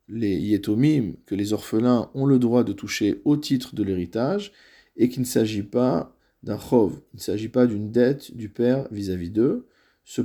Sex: male